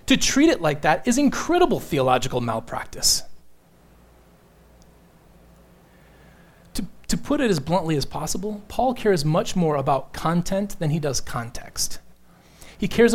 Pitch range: 130-190 Hz